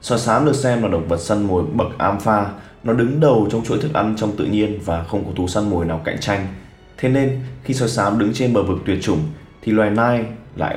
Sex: male